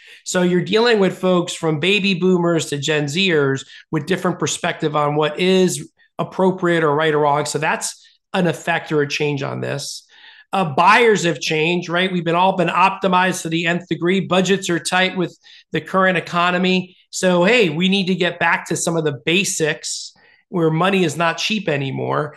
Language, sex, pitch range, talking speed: English, male, 155-185 Hz, 190 wpm